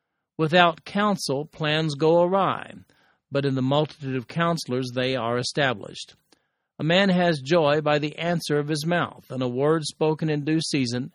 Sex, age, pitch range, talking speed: male, 50-69, 140-170 Hz, 165 wpm